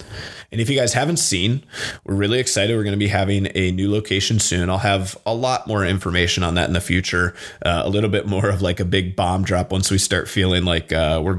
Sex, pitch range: male, 90-105 Hz